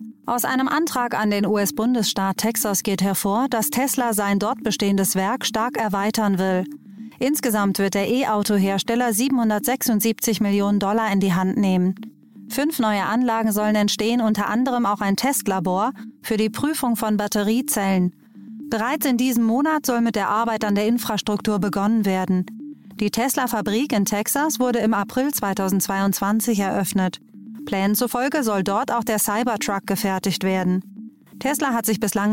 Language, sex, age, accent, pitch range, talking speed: German, female, 30-49, German, 200-235 Hz, 145 wpm